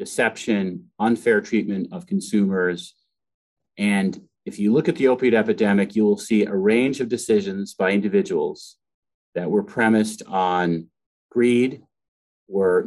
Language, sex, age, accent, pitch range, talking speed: English, male, 30-49, American, 100-130 Hz, 130 wpm